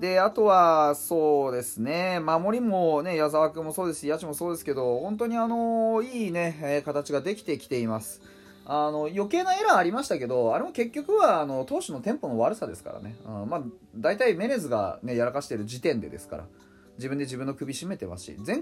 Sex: male